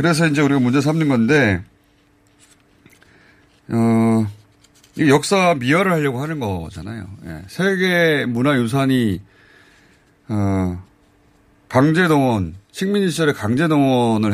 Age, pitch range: 30-49, 100-145 Hz